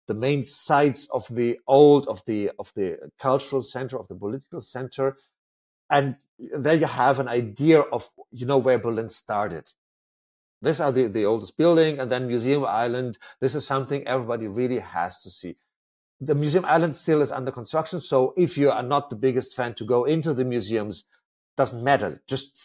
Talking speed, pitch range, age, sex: 185 wpm, 125-150 Hz, 40-59, male